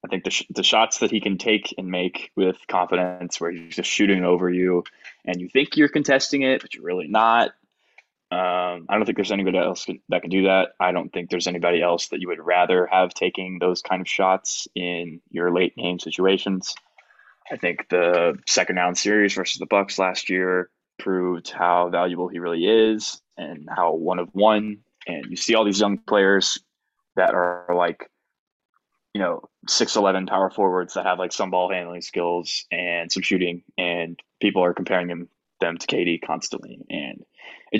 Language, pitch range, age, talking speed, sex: English, 90-95 Hz, 20-39, 190 wpm, male